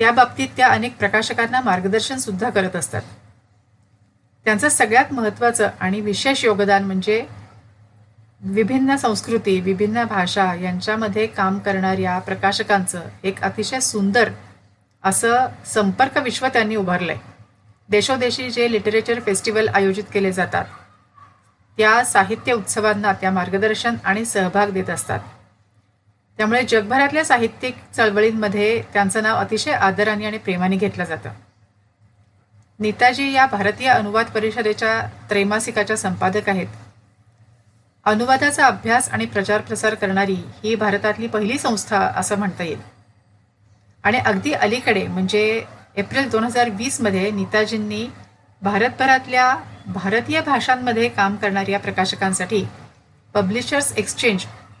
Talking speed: 110 wpm